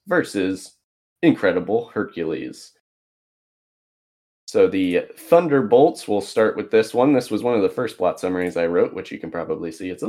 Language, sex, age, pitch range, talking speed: English, male, 20-39, 95-160 Hz, 165 wpm